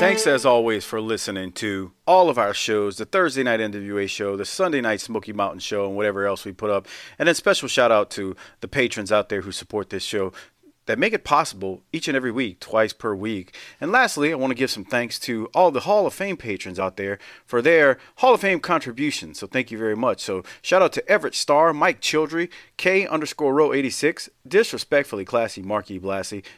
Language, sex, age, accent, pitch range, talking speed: English, male, 40-59, American, 100-140 Hz, 215 wpm